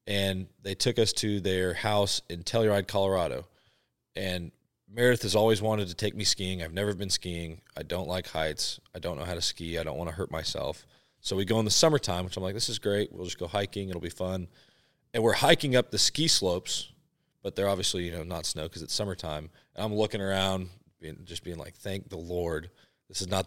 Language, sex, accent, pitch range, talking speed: English, male, American, 90-110 Hz, 225 wpm